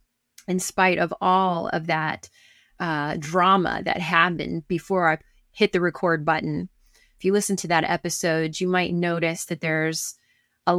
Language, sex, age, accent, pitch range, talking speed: English, female, 30-49, American, 160-195 Hz, 155 wpm